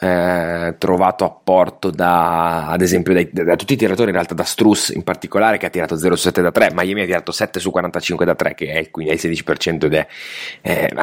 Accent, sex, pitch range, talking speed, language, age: native, male, 85-100 Hz, 230 wpm, Italian, 30-49